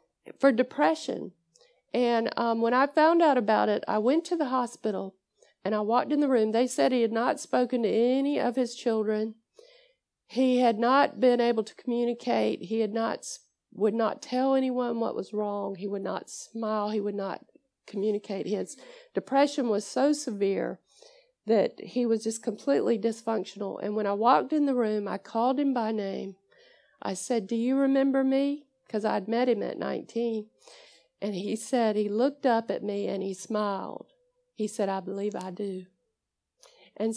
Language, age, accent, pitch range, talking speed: English, 50-69, American, 210-265 Hz, 180 wpm